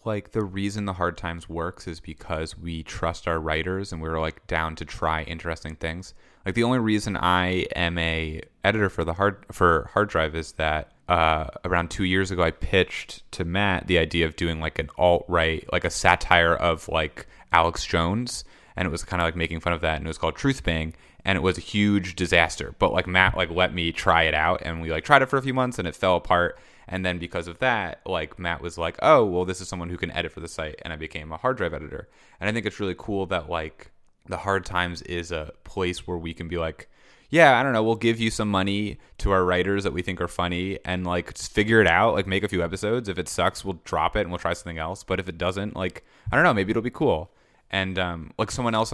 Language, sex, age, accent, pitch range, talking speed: English, male, 30-49, American, 80-100 Hz, 255 wpm